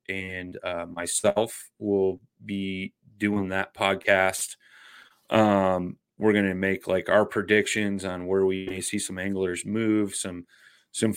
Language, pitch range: English, 95-115 Hz